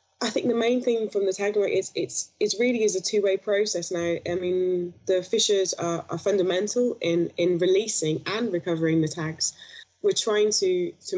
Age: 20-39